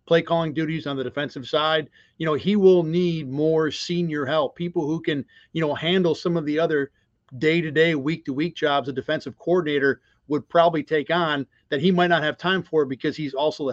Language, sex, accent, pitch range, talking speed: English, male, American, 140-170 Hz, 200 wpm